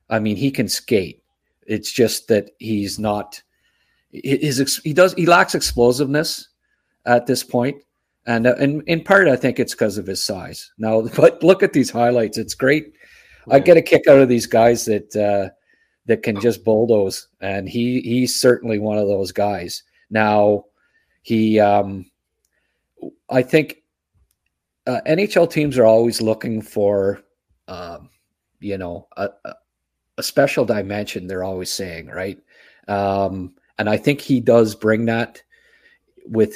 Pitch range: 105-130 Hz